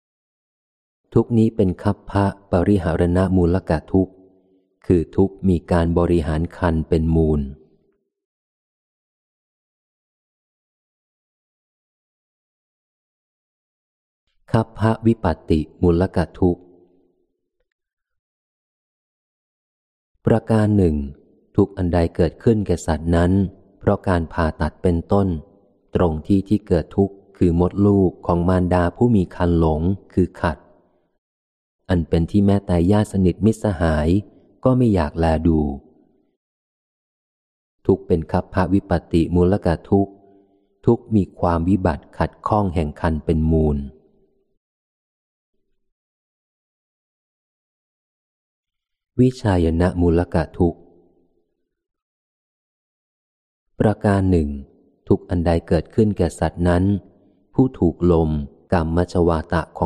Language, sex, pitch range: Thai, male, 85-100 Hz